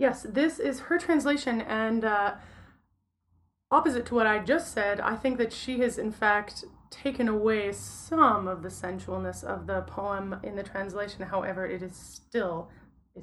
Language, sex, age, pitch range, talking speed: English, female, 30-49, 185-225 Hz, 170 wpm